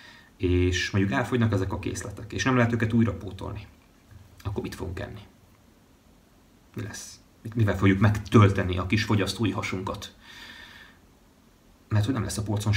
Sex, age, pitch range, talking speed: male, 30-49, 95-115 Hz, 145 wpm